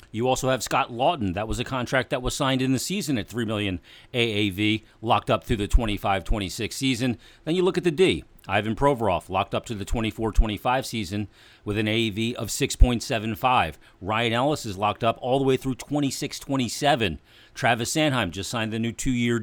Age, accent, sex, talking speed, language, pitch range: 40-59, American, male, 200 wpm, English, 100-125 Hz